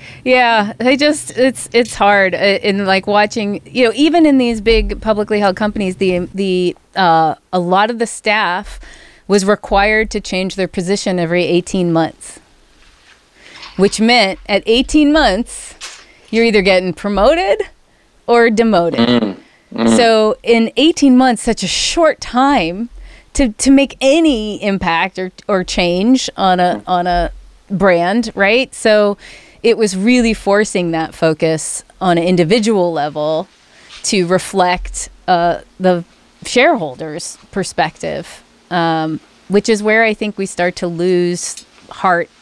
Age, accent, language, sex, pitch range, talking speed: 30-49, American, English, female, 170-220 Hz, 135 wpm